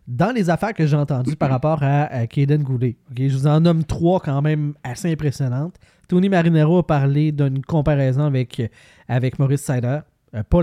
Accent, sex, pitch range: Canadian, male, 130-150 Hz